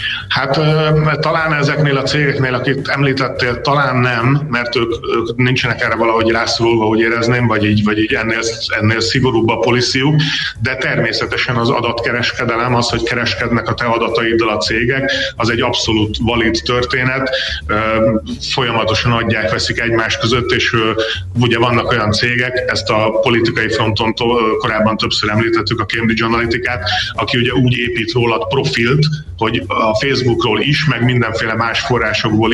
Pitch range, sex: 110-130 Hz, male